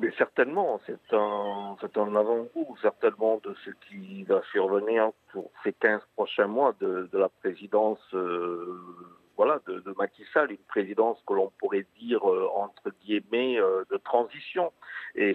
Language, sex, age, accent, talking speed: French, male, 50-69, French, 160 wpm